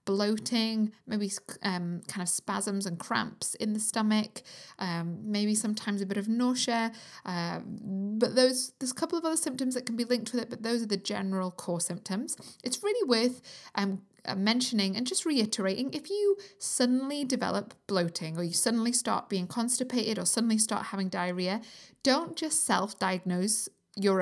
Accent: British